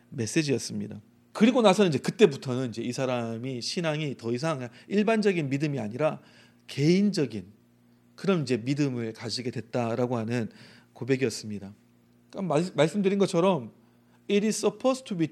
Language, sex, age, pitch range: Korean, male, 40-59, 120-195 Hz